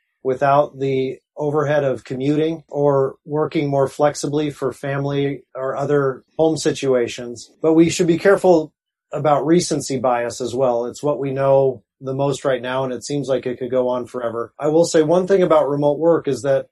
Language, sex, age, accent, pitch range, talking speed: English, male, 30-49, American, 130-150 Hz, 185 wpm